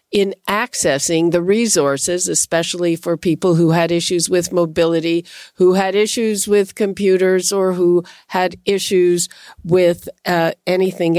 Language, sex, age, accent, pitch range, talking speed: English, female, 50-69, American, 170-210 Hz, 130 wpm